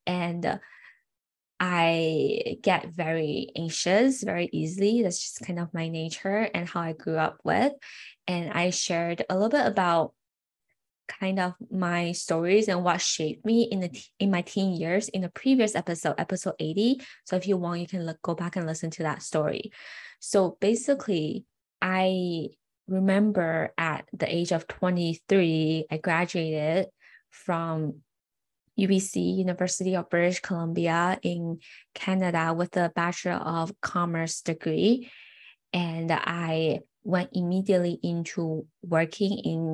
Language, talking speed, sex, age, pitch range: English, 140 wpm, female, 10-29, 165-195 Hz